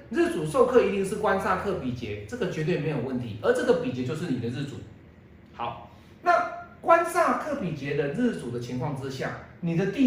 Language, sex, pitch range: Chinese, male, 115-170 Hz